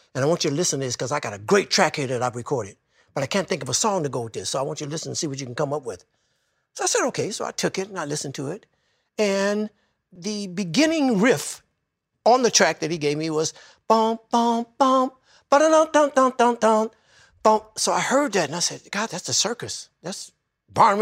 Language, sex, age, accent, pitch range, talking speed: English, male, 60-79, American, 135-215 Hz, 245 wpm